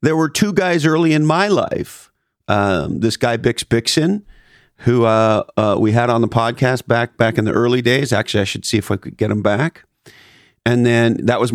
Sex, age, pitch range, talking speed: male, 40-59, 110-140 Hz, 215 wpm